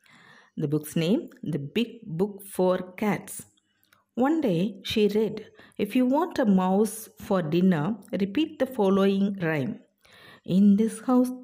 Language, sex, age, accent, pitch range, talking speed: Tamil, female, 60-79, native, 190-255 Hz, 135 wpm